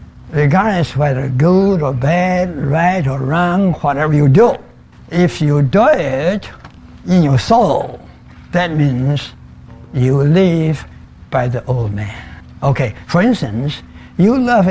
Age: 60-79